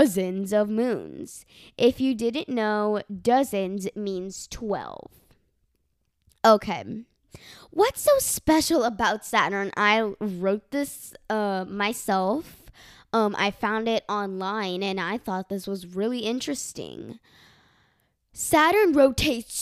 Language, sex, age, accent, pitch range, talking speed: English, female, 10-29, American, 205-265 Hz, 110 wpm